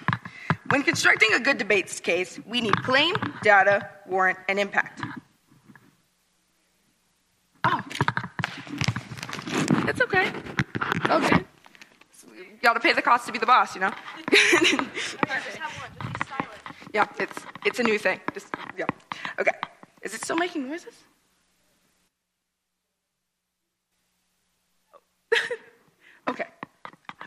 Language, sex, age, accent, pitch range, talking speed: English, female, 20-39, American, 210-305 Hz, 90 wpm